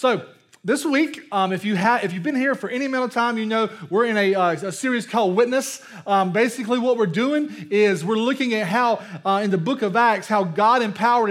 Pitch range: 195-255 Hz